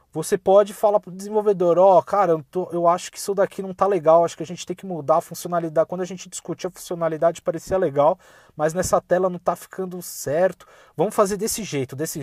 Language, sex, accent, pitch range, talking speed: Portuguese, male, Brazilian, 160-200 Hz, 235 wpm